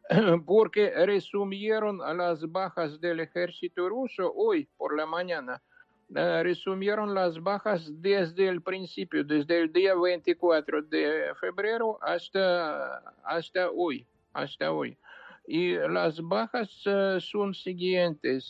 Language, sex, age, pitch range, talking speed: English, male, 60-79, 170-205 Hz, 105 wpm